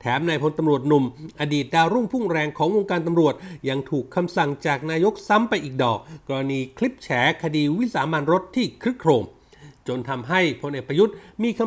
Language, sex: Thai, male